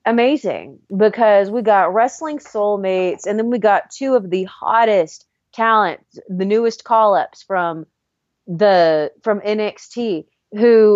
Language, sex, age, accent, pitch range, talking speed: English, female, 30-49, American, 190-265 Hz, 125 wpm